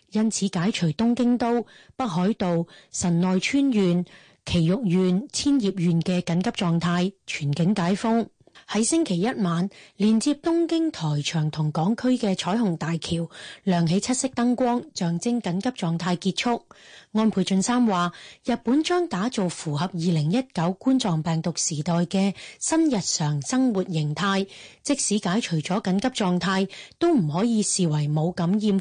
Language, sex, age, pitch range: Chinese, female, 30-49, 175-235 Hz